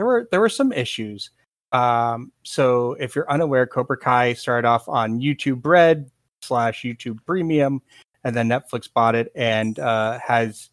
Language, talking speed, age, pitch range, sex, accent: English, 160 wpm, 30-49, 115-145 Hz, male, American